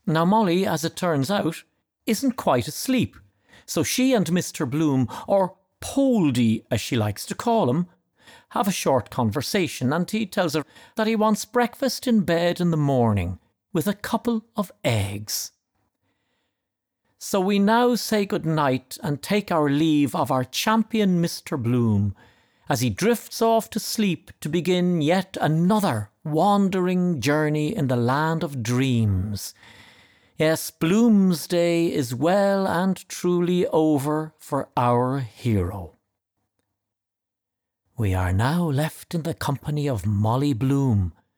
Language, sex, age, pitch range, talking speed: English, male, 50-69, 125-195 Hz, 140 wpm